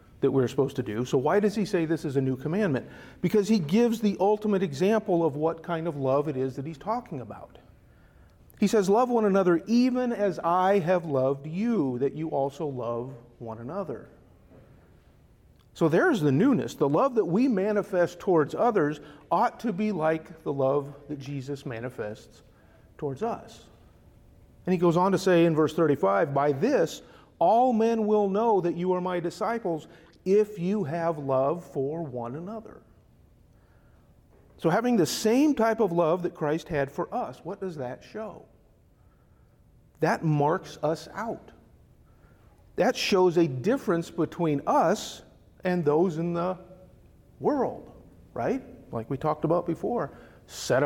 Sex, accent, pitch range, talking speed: male, American, 145-195 Hz, 160 wpm